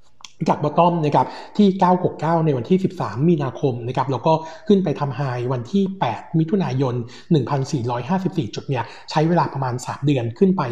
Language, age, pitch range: Thai, 60-79, 130-175 Hz